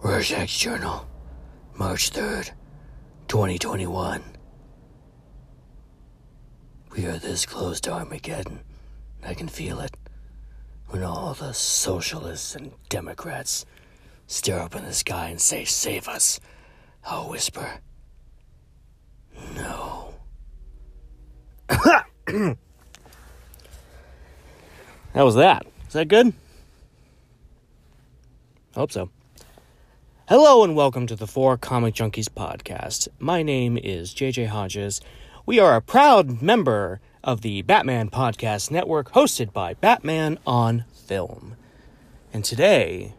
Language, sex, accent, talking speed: English, male, American, 100 wpm